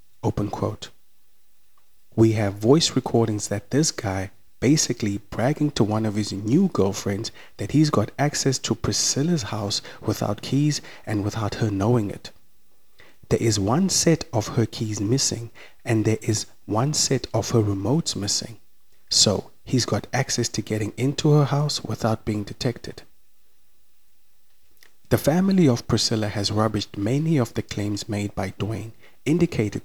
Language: English